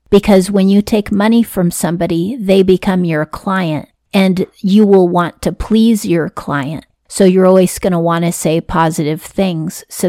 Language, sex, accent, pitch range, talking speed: English, female, American, 170-195 Hz, 180 wpm